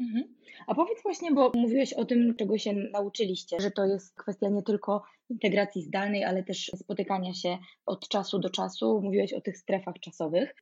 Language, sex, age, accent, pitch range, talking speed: Polish, female, 20-39, native, 190-225 Hz, 175 wpm